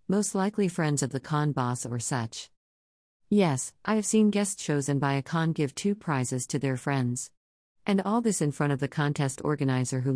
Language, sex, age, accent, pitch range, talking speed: English, female, 50-69, American, 135-170 Hz, 205 wpm